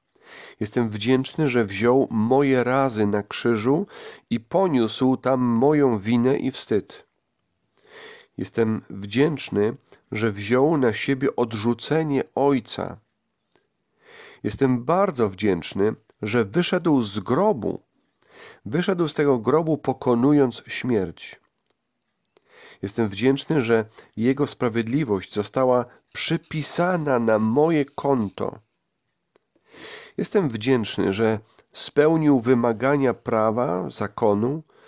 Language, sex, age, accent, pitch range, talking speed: Polish, male, 40-59, native, 115-145 Hz, 90 wpm